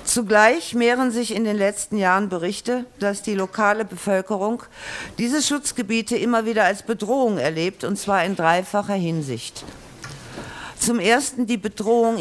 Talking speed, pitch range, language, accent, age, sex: 140 wpm, 150-210 Hz, German, German, 50-69, female